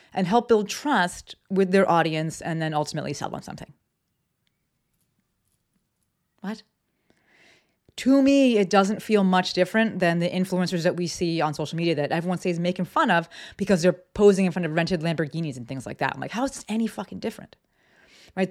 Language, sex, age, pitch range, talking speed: English, female, 30-49, 160-200 Hz, 190 wpm